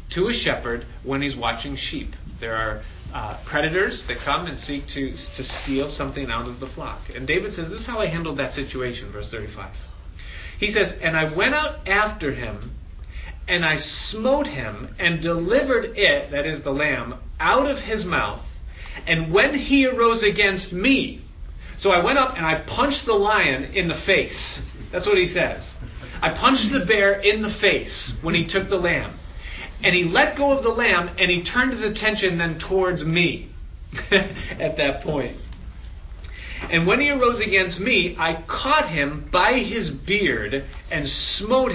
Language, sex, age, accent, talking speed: English, male, 40-59, American, 180 wpm